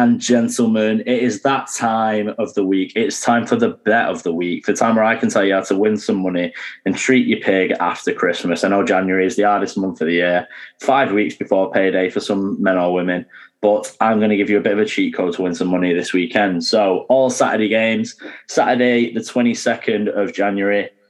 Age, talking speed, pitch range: 10-29, 230 wpm, 105-125 Hz